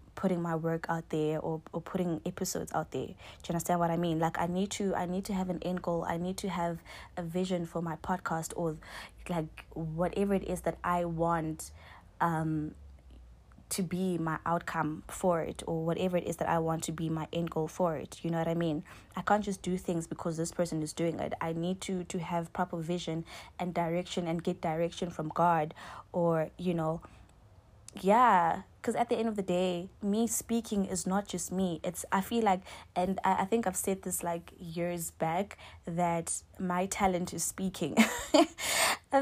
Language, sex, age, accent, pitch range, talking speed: English, female, 20-39, South African, 165-195 Hz, 205 wpm